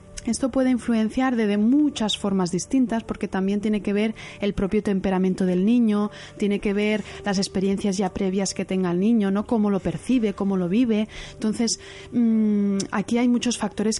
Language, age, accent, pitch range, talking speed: Spanish, 20-39, Spanish, 195-225 Hz, 180 wpm